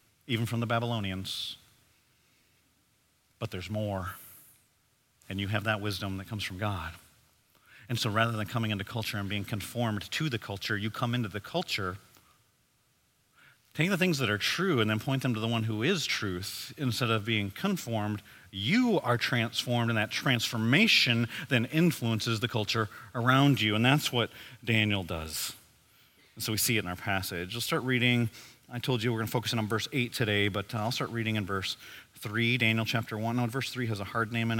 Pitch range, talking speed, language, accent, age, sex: 105-140 Hz, 195 wpm, English, American, 40-59, male